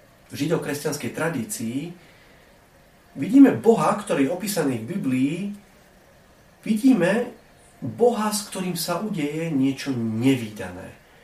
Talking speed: 95 wpm